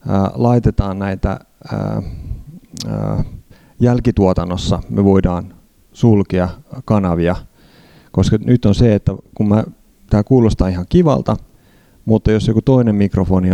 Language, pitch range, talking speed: Finnish, 95-115 Hz, 110 wpm